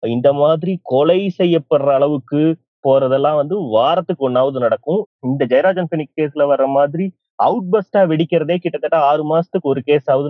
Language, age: Tamil, 30-49